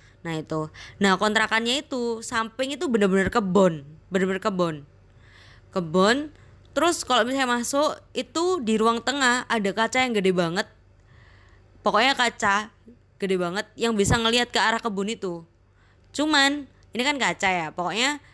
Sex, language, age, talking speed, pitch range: female, Indonesian, 20-39, 135 wpm, 155-235 Hz